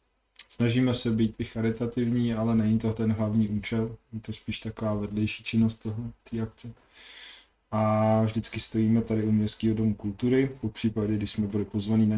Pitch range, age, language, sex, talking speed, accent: 105-110 Hz, 20-39, Czech, male, 170 wpm, native